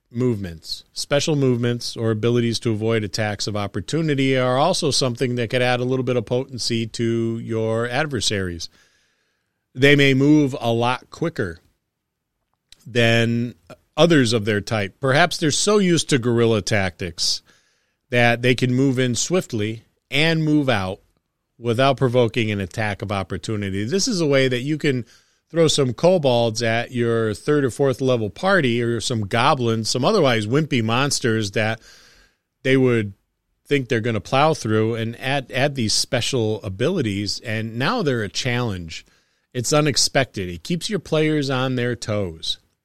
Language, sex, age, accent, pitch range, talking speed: English, male, 40-59, American, 105-135 Hz, 155 wpm